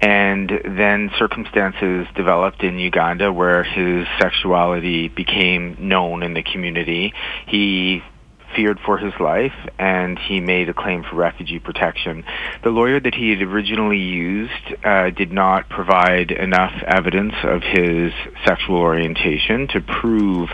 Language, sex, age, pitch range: English, male, 30-49, 85-100 Hz